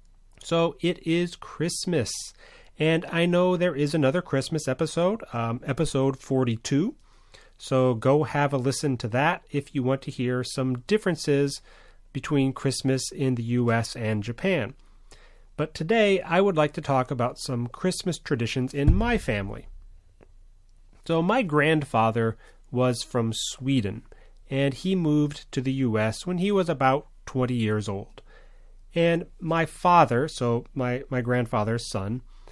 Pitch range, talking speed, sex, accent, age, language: 120-155 Hz, 140 wpm, male, American, 30-49, English